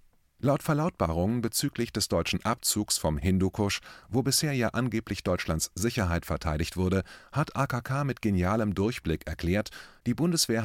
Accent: German